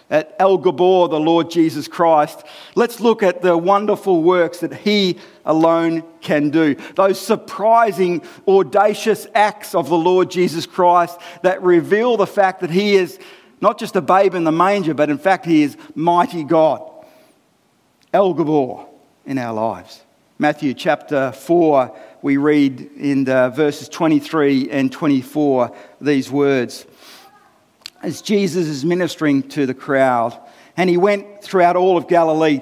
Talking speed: 145 wpm